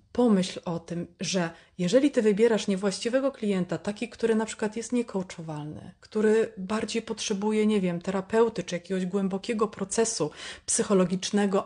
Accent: native